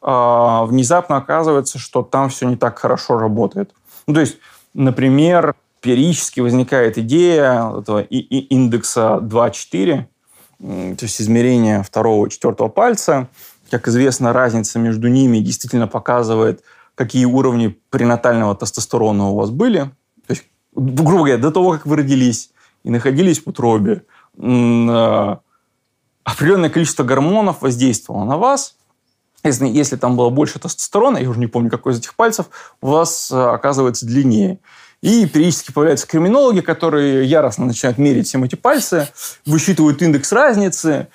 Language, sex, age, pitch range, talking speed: Russian, male, 20-39, 120-165 Hz, 135 wpm